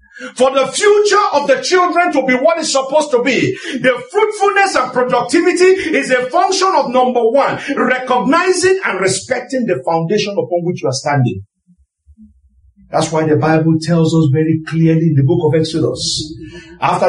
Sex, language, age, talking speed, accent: male, English, 50-69, 165 wpm, Nigerian